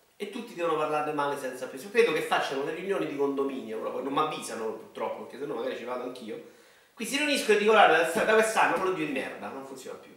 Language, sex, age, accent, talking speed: Italian, male, 30-49, native, 235 wpm